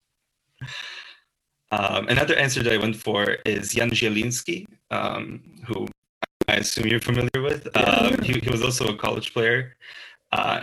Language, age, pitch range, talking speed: English, 20-39, 110-120 Hz, 140 wpm